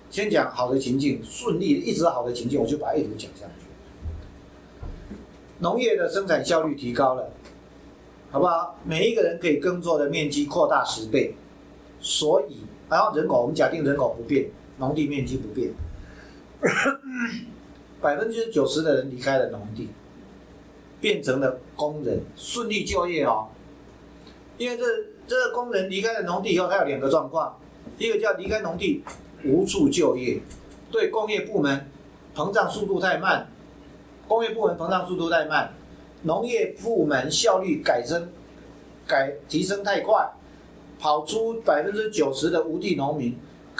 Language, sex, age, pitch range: Chinese, male, 50-69, 130-205 Hz